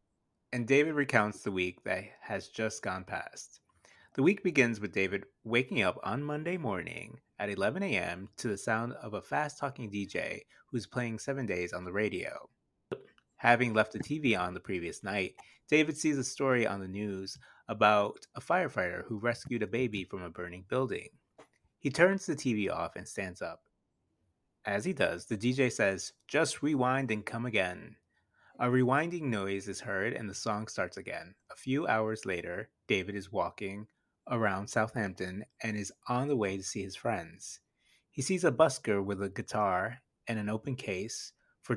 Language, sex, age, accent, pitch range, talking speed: English, male, 30-49, American, 100-130 Hz, 175 wpm